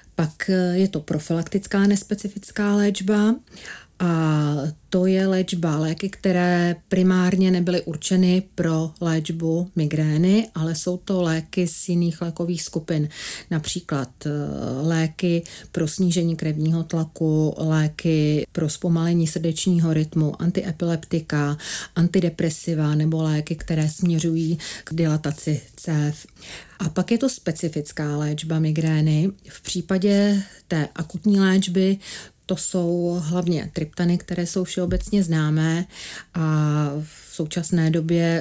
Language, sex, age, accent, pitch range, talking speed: Czech, female, 40-59, native, 155-180 Hz, 110 wpm